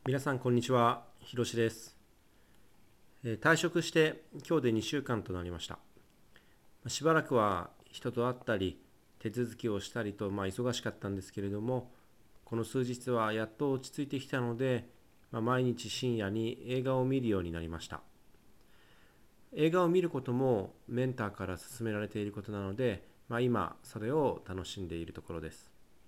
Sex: male